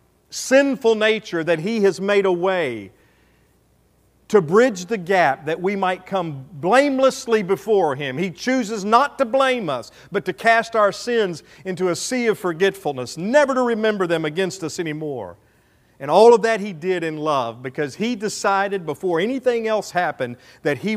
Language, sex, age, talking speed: English, male, 50-69, 170 wpm